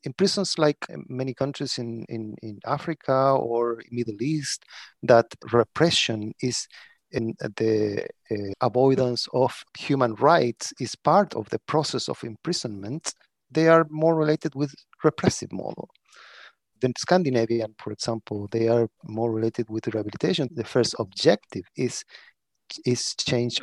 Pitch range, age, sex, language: 115-145 Hz, 40-59, male, English